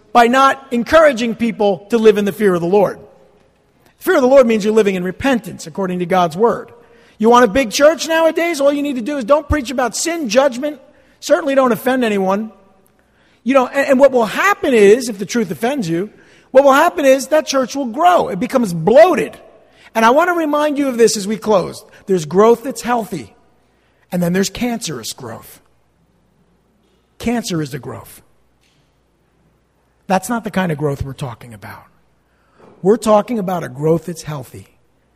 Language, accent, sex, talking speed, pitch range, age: English, American, male, 190 wpm, 195-270 Hz, 50-69